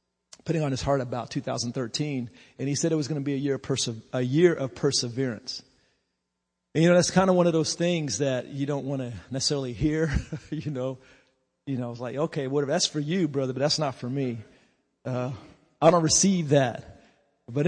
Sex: male